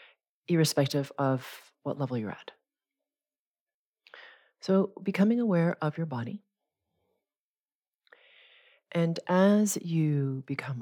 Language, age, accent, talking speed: English, 40-59, American, 90 wpm